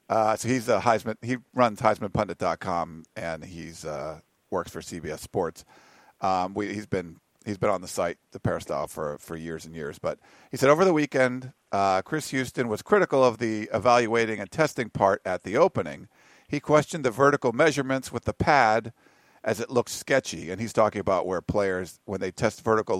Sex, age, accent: male, 50-69, American